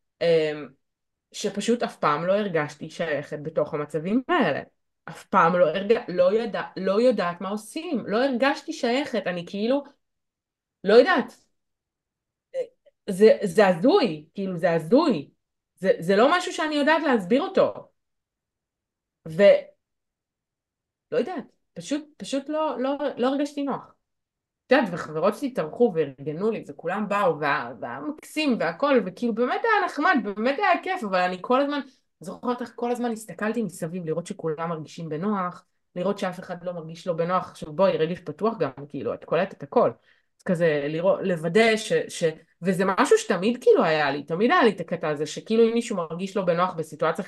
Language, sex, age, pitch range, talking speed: Hebrew, female, 20-39, 170-255 Hz, 150 wpm